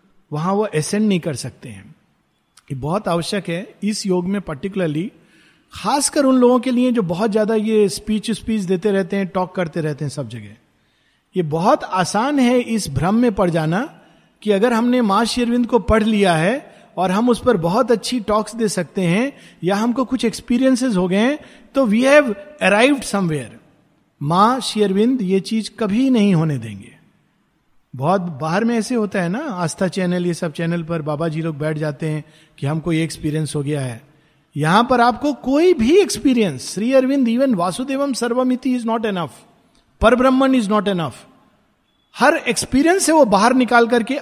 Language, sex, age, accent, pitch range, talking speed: Hindi, male, 50-69, native, 160-235 Hz, 180 wpm